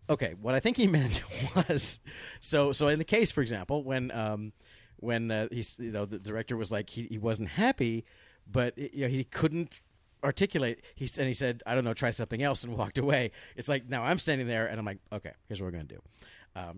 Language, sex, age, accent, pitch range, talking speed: English, male, 40-59, American, 110-145 Hz, 235 wpm